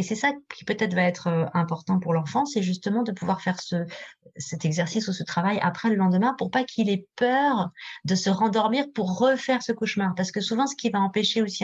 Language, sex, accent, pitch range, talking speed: French, female, French, 175-220 Hz, 225 wpm